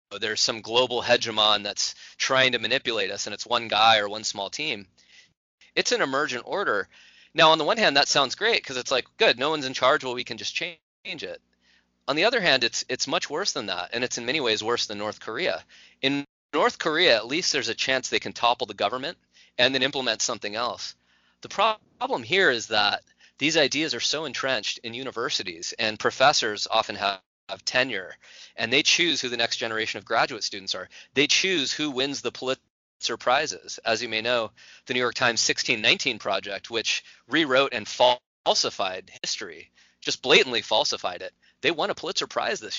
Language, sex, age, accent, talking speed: English, male, 30-49, American, 200 wpm